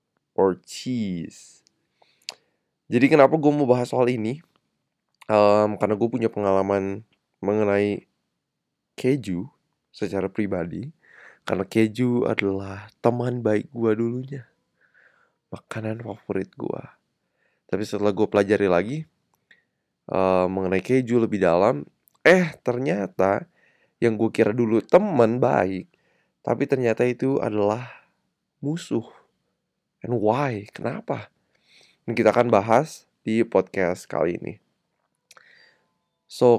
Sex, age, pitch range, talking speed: male, 20-39, 100-125 Hz, 105 wpm